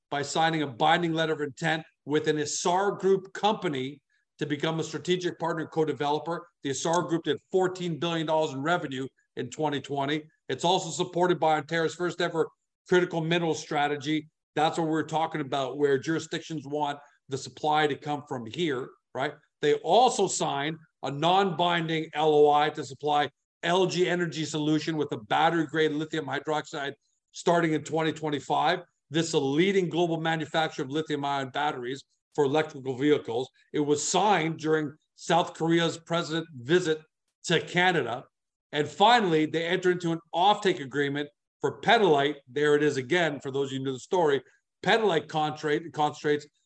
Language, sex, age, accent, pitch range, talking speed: English, male, 50-69, American, 150-170 Hz, 150 wpm